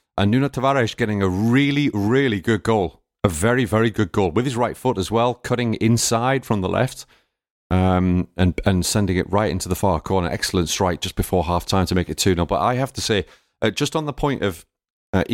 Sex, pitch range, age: male, 90-110 Hz, 30-49